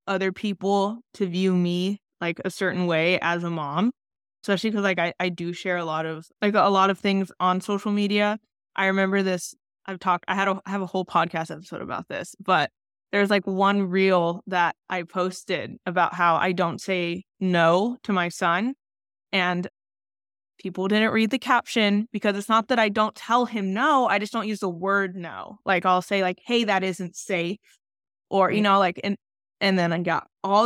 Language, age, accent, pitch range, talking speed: English, 20-39, American, 180-215 Hz, 200 wpm